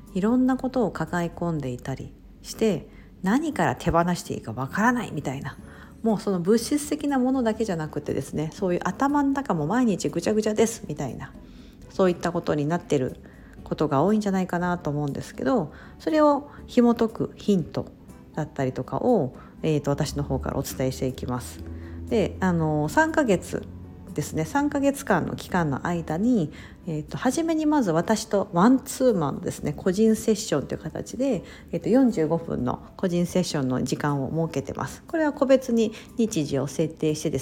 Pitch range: 145-230 Hz